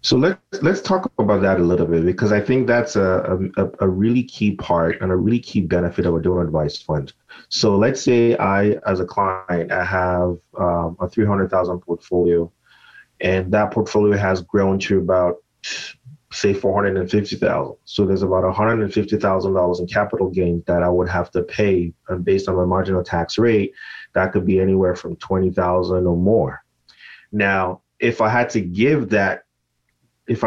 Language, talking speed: English, 170 wpm